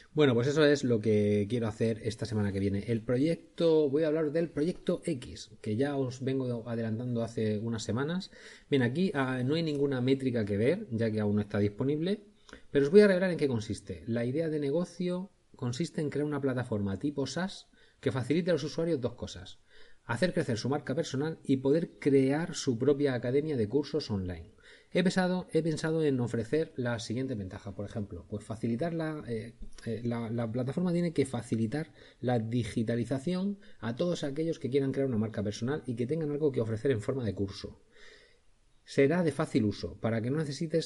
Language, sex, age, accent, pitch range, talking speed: Spanish, male, 30-49, Spanish, 110-155 Hz, 195 wpm